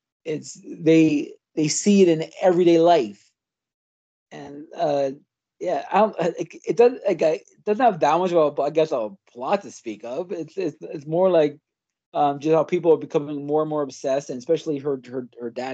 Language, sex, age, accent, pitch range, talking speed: English, male, 30-49, American, 145-210 Hz, 200 wpm